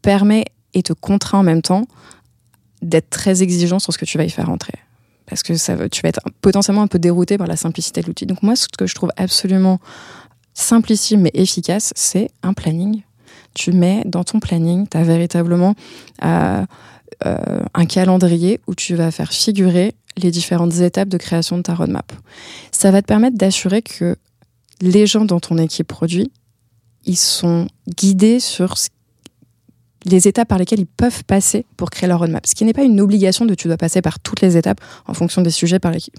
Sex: female